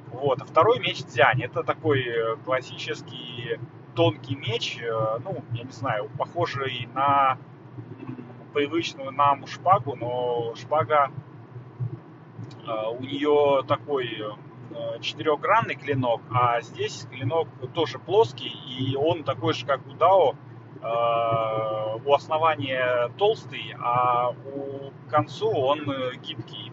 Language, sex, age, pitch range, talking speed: Russian, male, 30-49, 120-145 Hz, 100 wpm